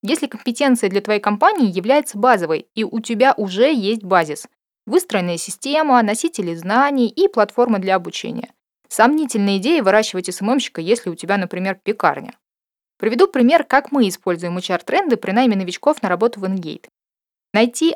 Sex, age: female, 20-39